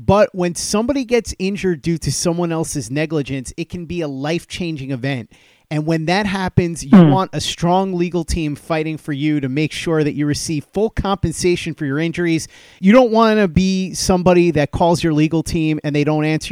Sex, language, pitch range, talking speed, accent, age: male, English, 150-175 Hz, 200 wpm, American, 30-49